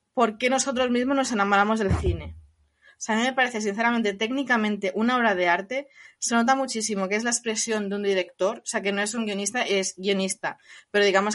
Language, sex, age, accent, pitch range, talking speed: Spanish, female, 20-39, Spanish, 205-245 Hz, 215 wpm